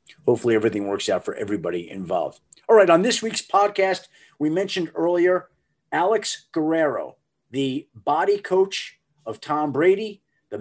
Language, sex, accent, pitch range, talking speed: English, male, American, 155-220 Hz, 140 wpm